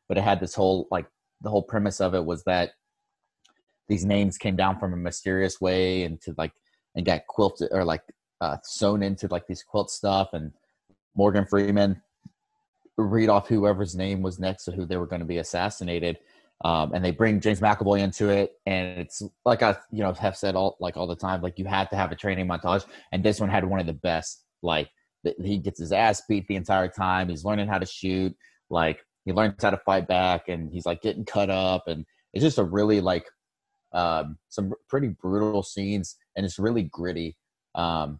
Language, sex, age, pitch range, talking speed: English, male, 30-49, 90-100 Hz, 210 wpm